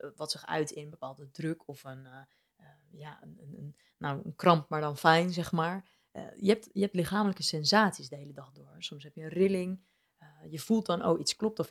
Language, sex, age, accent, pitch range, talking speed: Dutch, female, 30-49, Dutch, 155-195 Hz, 230 wpm